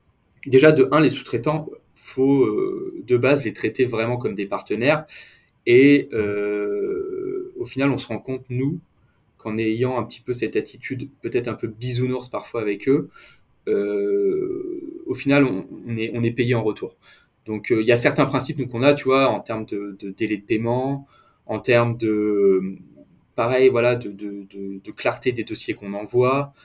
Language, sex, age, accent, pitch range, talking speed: French, male, 20-39, French, 110-140 Hz, 165 wpm